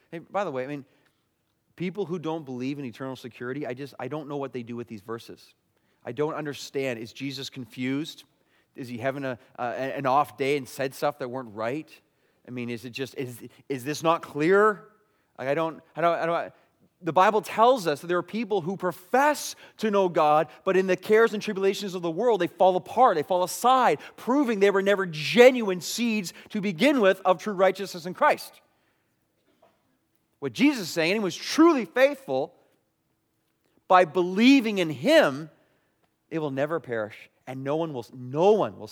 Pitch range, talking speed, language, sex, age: 125-190 Hz, 190 wpm, English, male, 30-49